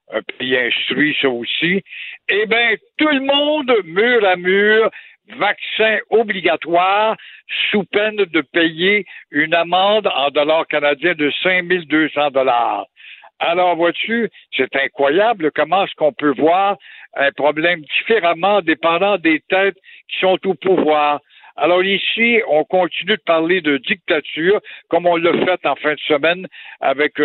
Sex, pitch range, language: male, 155-215 Hz, French